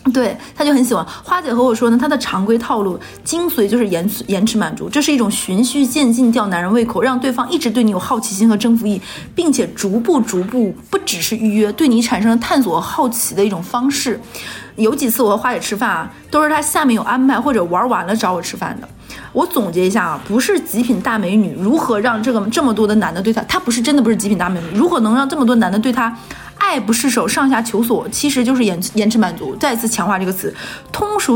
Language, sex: Chinese, female